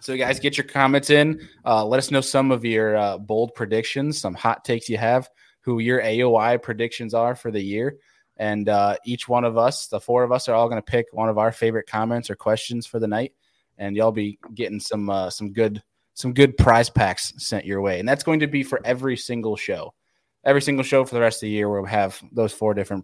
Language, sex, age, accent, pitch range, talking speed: English, male, 20-39, American, 105-130 Hz, 240 wpm